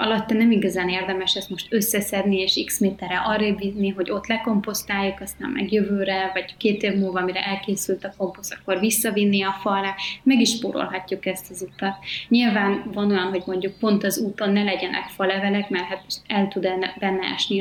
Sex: female